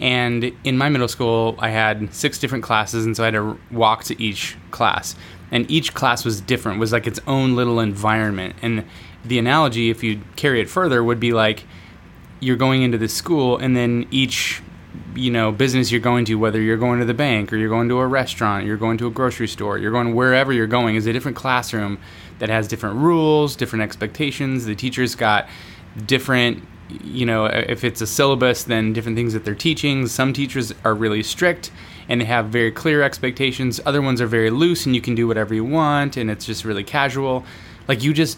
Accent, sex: American, male